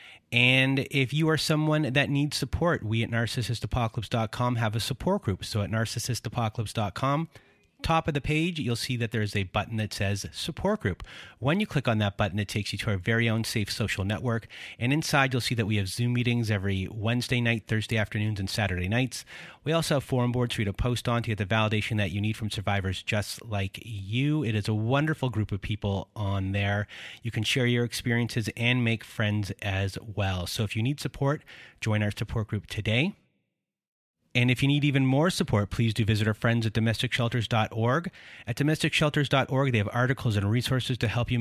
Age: 30-49